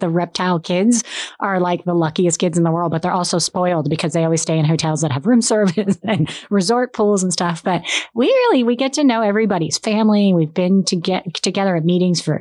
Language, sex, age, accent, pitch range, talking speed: English, female, 30-49, American, 160-200 Hz, 225 wpm